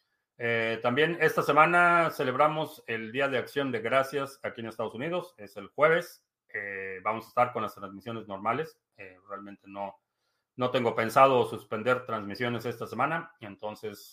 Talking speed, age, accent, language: 155 wpm, 40-59, Mexican, Spanish